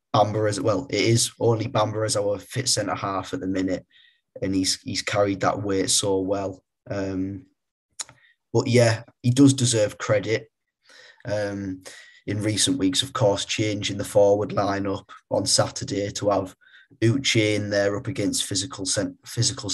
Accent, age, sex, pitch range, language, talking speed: British, 20-39, male, 95-115 Hz, English, 155 wpm